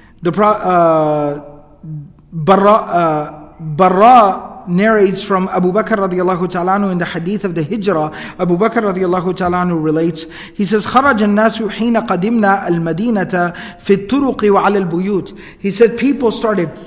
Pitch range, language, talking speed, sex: 180-220 Hz, English, 135 wpm, male